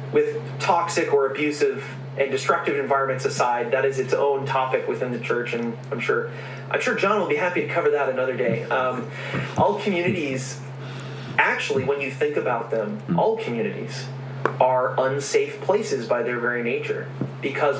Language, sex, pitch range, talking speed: English, male, 130-150 Hz, 165 wpm